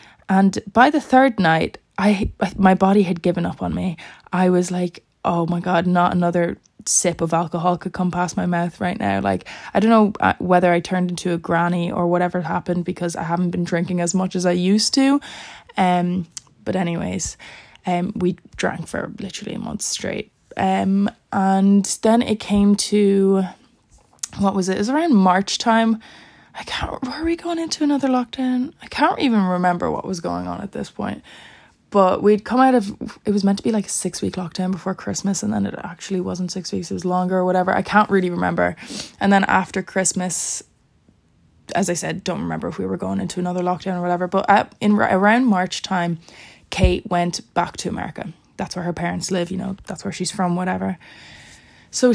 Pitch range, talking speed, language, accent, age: 175-205 Hz, 200 wpm, English, Irish, 20-39